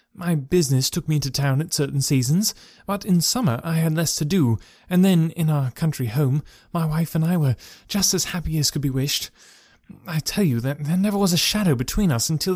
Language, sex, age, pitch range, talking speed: English, male, 30-49, 135-185 Hz, 225 wpm